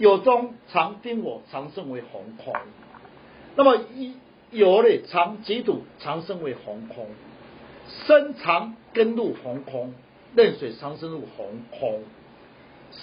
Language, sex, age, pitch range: Chinese, male, 50-69, 170-260 Hz